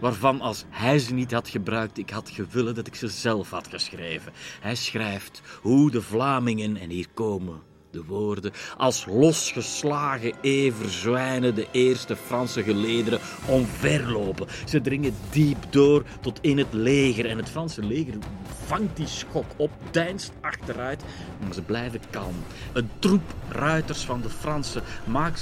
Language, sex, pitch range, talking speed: Dutch, male, 105-140 Hz, 150 wpm